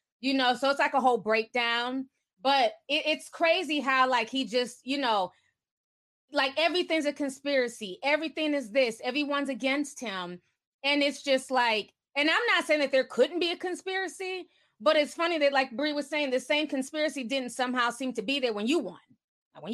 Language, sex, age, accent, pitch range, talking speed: English, female, 20-39, American, 255-320 Hz, 190 wpm